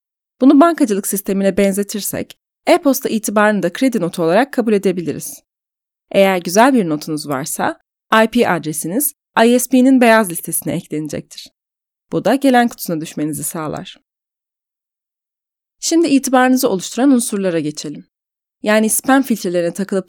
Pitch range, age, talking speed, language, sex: 175-260 Hz, 30-49, 115 wpm, Turkish, female